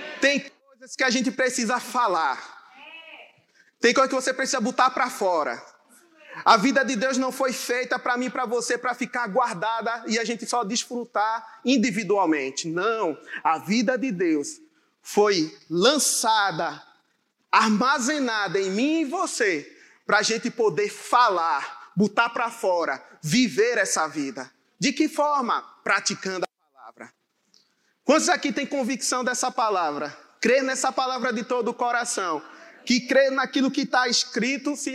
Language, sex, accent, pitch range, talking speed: Portuguese, male, Brazilian, 225-265 Hz, 140 wpm